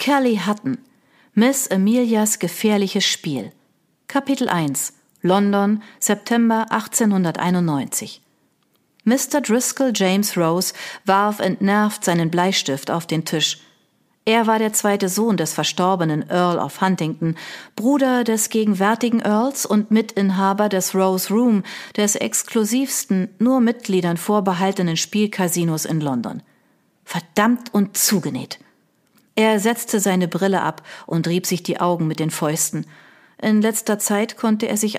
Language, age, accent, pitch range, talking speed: German, 40-59, German, 175-225 Hz, 120 wpm